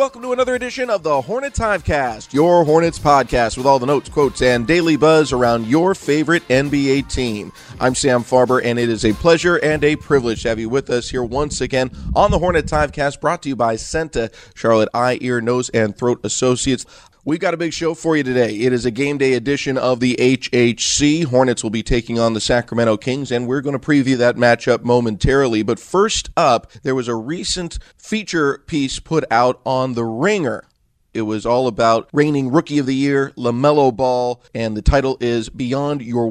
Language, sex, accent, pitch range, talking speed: English, male, American, 120-145 Hz, 205 wpm